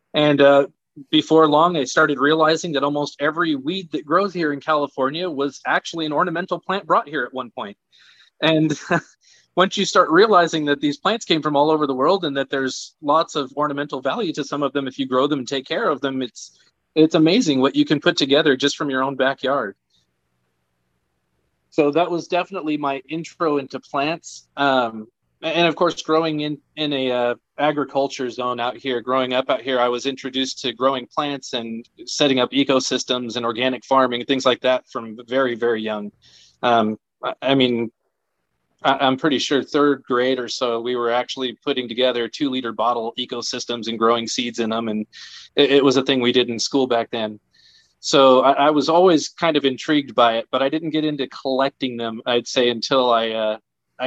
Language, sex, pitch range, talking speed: English, male, 120-150 Hz, 200 wpm